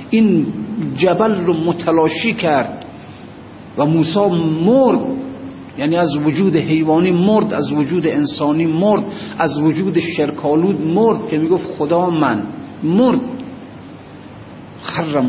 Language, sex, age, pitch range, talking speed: Persian, male, 50-69, 150-195 Hz, 105 wpm